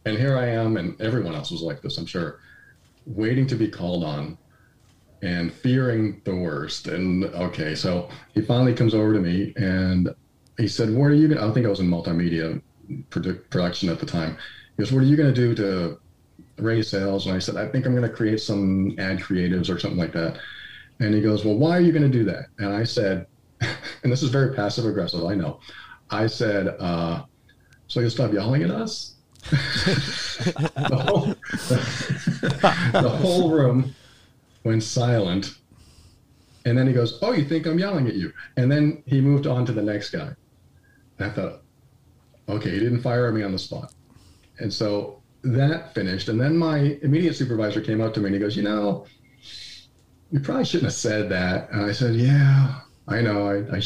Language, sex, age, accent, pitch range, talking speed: English, male, 40-59, American, 100-135 Hz, 195 wpm